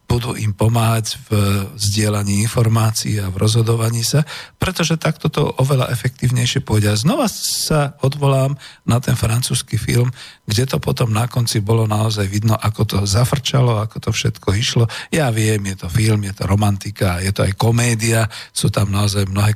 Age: 50-69